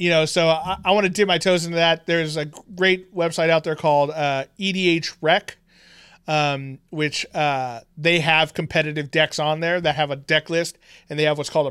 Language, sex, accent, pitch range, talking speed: English, male, American, 135-165 Hz, 210 wpm